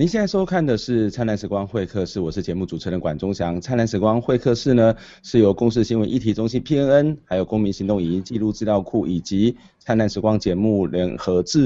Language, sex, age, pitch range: Chinese, male, 30-49, 95-115 Hz